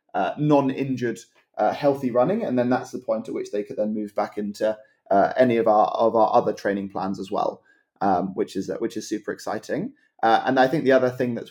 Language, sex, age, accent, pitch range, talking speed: English, male, 20-39, British, 110-130 Hz, 235 wpm